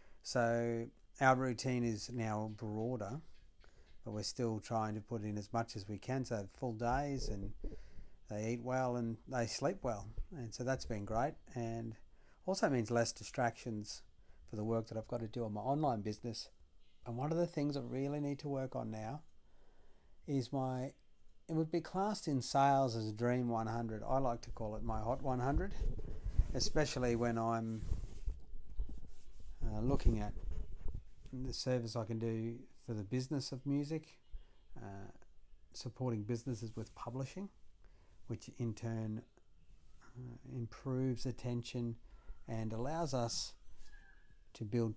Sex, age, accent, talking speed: male, 50-69, Australian, 155 wpm